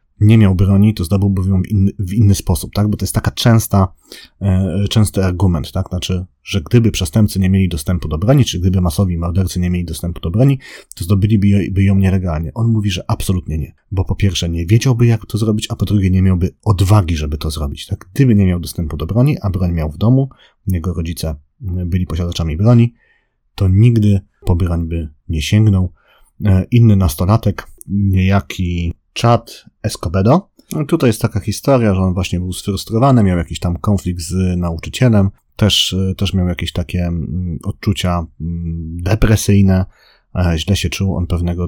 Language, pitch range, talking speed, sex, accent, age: Polish, 85-105 Hz, 175 wpm, male, native, 30-49